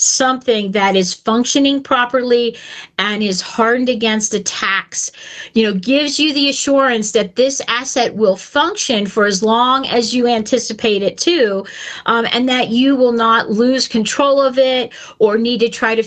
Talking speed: 165 wpm